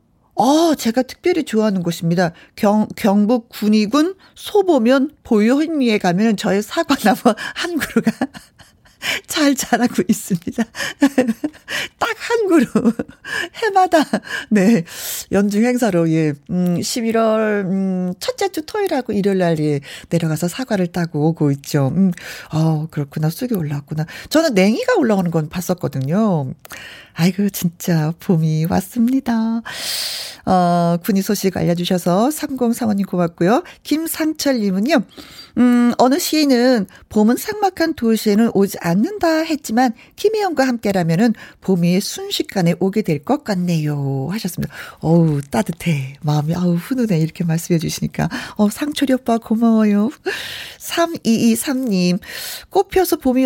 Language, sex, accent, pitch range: Korean, female, native, 180-260 Hz